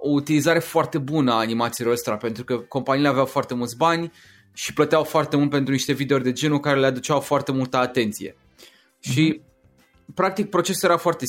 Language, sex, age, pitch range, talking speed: Romanian, male, 20-39, 120-155 Hz, 180 wpm